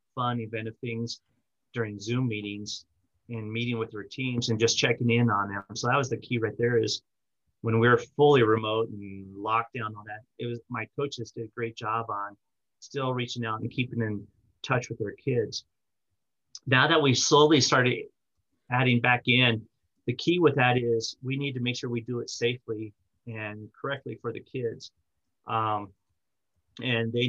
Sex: male